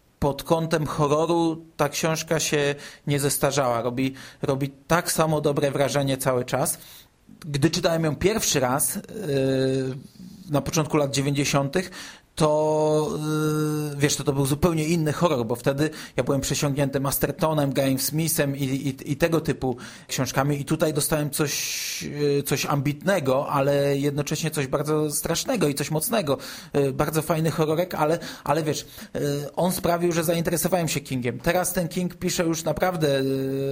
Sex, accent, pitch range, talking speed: male, native, 140-160 Hz, 140 wpm